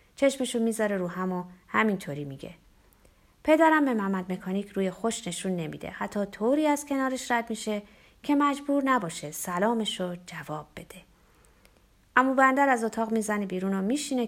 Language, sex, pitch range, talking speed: Persian, female, 180-245 Hz, 145 wpm